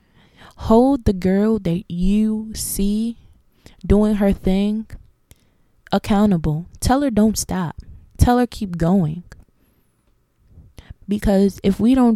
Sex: female